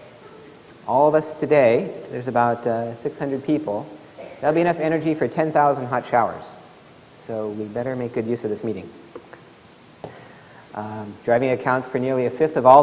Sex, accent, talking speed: male, American, 165 wpm